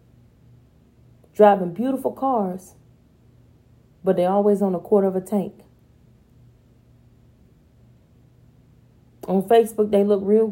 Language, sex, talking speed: English, female, 95 wpm